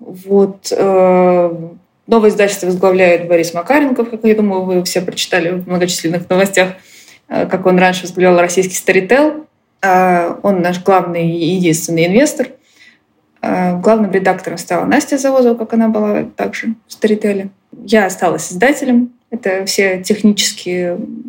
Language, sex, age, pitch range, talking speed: Russian, female, 20-39, 170-210 Hz, 120 wpm